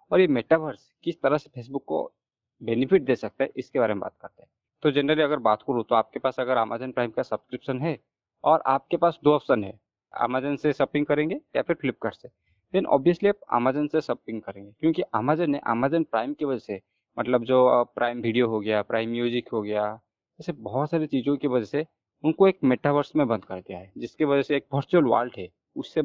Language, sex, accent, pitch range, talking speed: Hindi, male, native, 120-155 Hz, 220 wpm